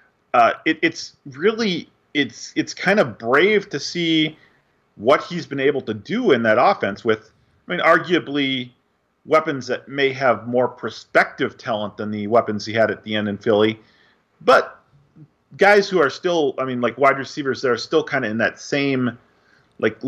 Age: 40-59